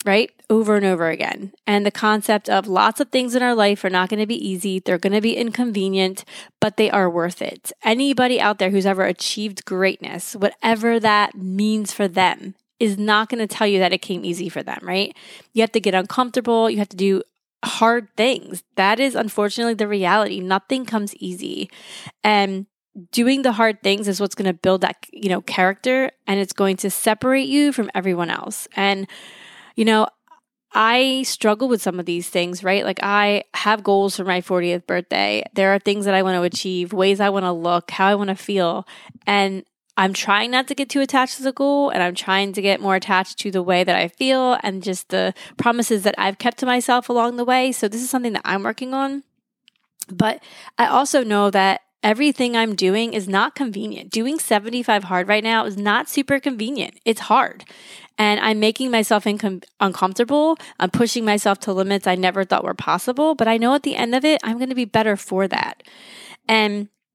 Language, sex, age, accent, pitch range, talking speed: English, female, 20-39, American, 190-240 Hz, 205 wpm